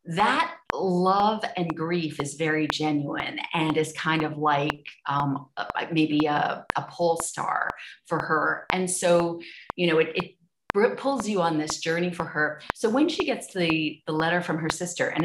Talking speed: 175 wpm